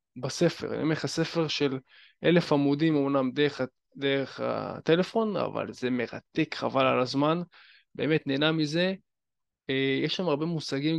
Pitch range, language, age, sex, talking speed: 140-175 Hz, Hebrew, 20-39, male, 130 wpm